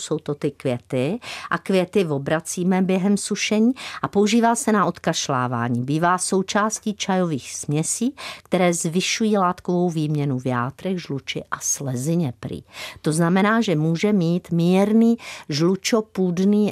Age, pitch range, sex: 50-69, 140-190 Hz, female